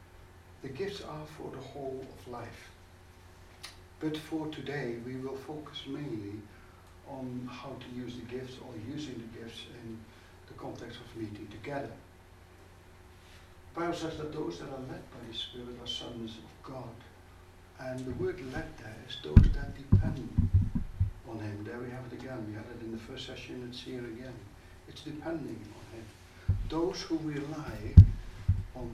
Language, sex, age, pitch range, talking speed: English, male, 60-79, 90-130 Hz, 165 wpm